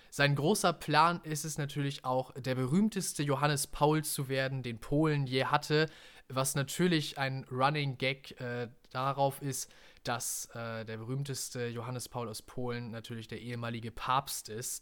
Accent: German